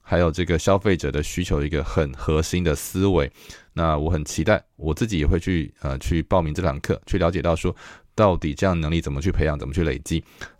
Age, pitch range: 20-39, 75-90 Hz